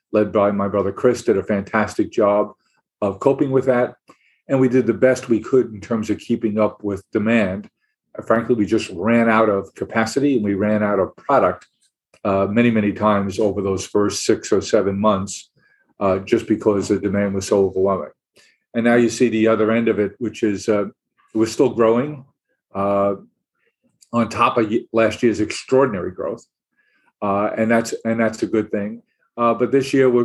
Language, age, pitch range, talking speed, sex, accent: English, 40-59, 105-120 Hz, 185 wpm, male, American